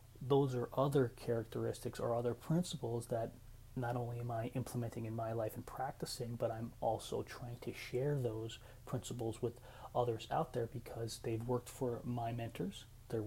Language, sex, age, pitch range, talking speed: English, male, 30-49, 115-125 Hz, 165 wpm